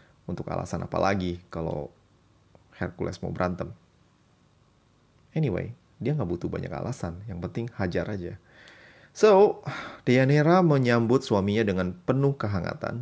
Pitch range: 95-150 Hz